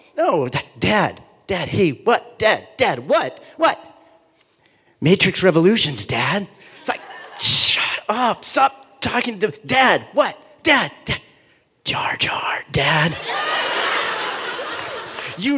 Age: 40-59